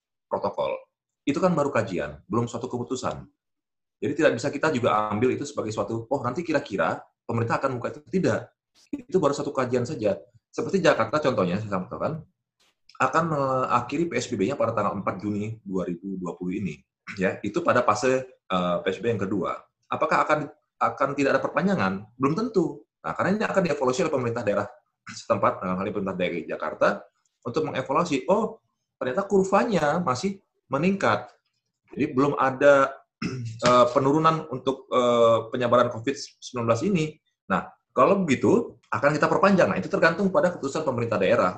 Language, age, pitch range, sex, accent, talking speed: Indonesian, 30-49, 110-155 Hz, male, native, 145 wpm